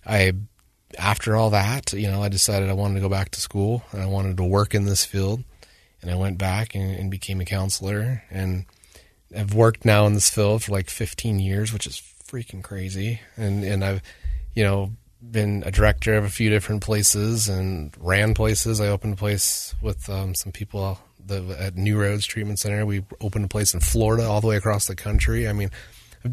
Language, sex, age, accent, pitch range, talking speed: English, male, 30-49, American, 95-120 Hz, 205 wpm